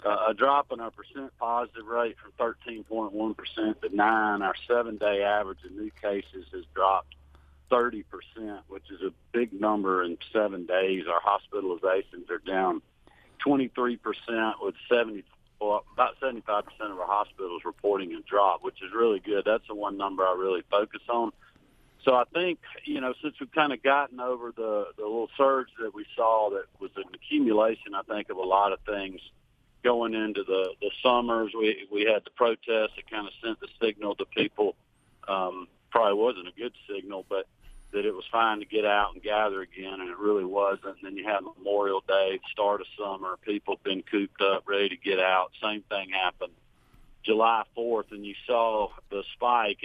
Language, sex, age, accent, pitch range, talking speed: English, male, 50-69, American, 100-135 Hz, 185 wpm